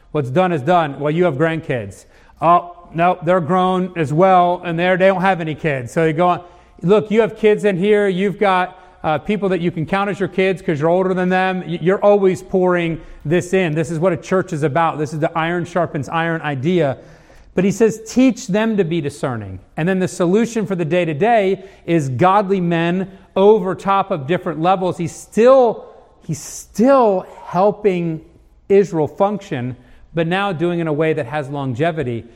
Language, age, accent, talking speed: English, 40-59, American, 195 wpm